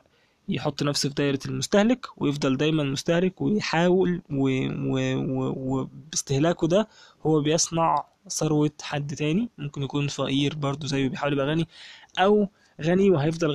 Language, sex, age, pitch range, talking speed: Arabic, male, 20-39, 145-175 Hz, 135 wpm